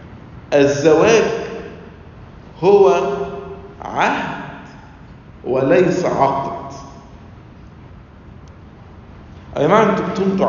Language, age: English, 50-69